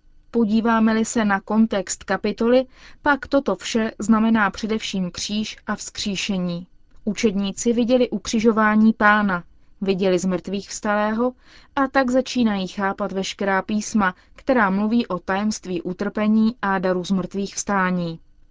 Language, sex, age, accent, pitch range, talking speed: Czech, female, 20-39, native, 190-225 Hz, 120 wpm